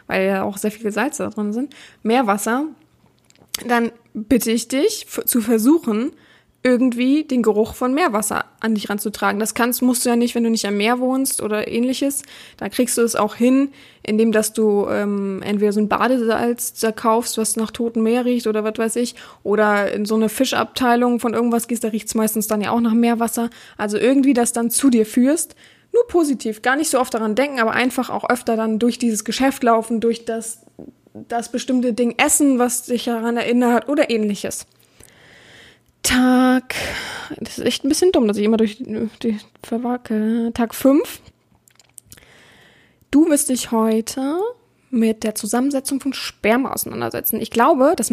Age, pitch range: 20-39, 220-255 Hz